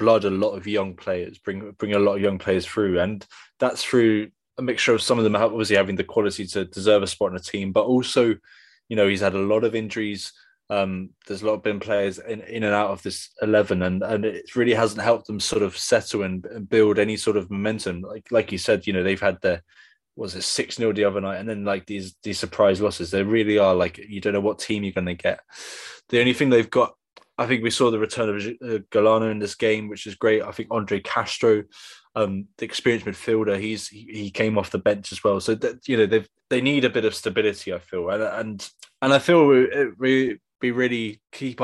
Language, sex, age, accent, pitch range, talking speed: English, male, 20-39, British, 100-115 Hz, 245 wpm